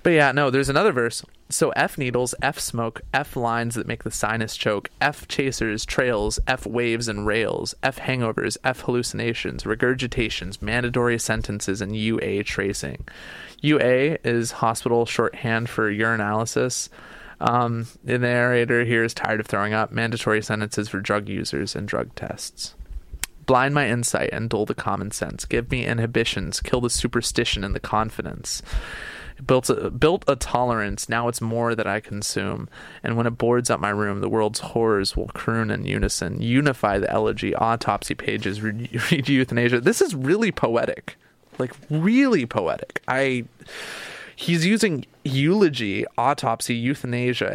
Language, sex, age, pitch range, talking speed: English, male, 20-39, 105-130 Hz, 155 wpm